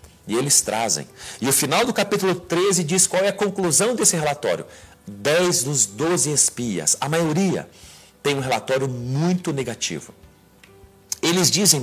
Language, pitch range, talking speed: Portuguese, 130-180 Hz, 145 wpm